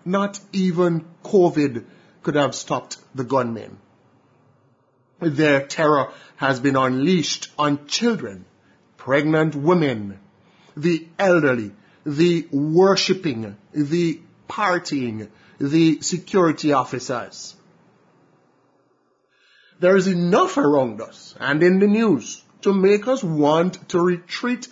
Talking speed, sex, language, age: 100 wpm, male, English, 30-49